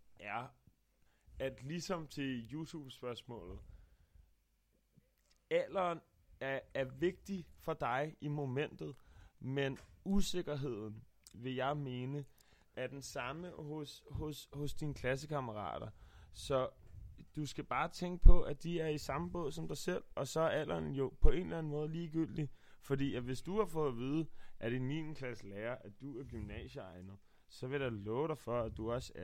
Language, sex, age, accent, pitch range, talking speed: Danish, male, 20-39, native, 105-145 Hz, 160 wpm